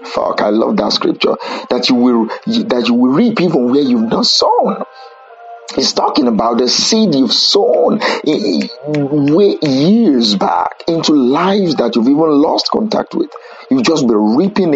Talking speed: 155 wpm